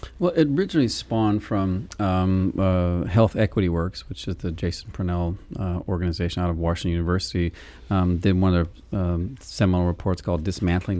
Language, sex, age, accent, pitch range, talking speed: English, male, 40-59, American, 85-95 Hz, 170 wpm